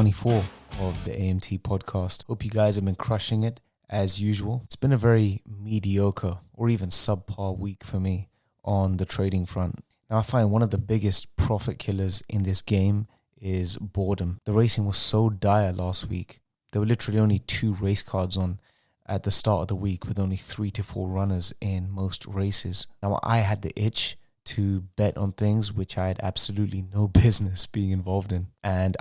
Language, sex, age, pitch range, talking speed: English, male, 20-39, 95-110 Hz, 190 wpm